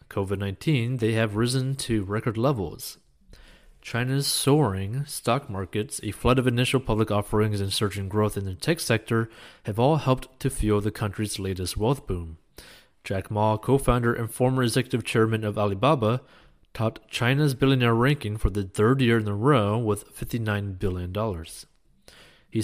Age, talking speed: 30-49, 155 wpm